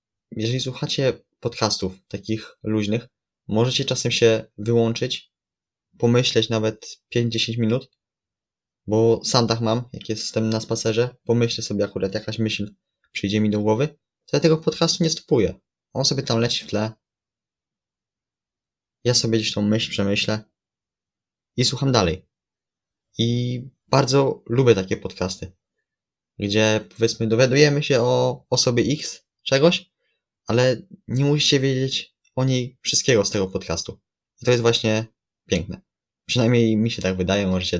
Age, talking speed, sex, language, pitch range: 20-39, 135 wpm, male, Polish, 100-120 Hz